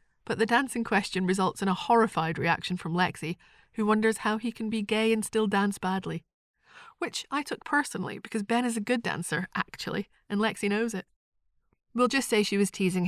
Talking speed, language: 200 wpm, English